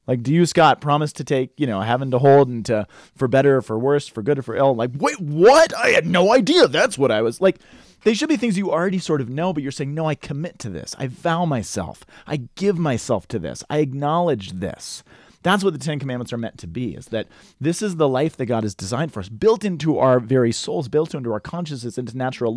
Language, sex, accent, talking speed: English, male, American, 255 wpm